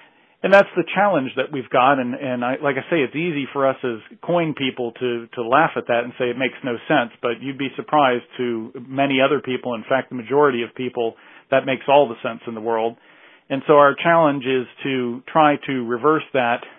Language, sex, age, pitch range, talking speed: English, male, 40-59, 120-140 Hz, 225 wpm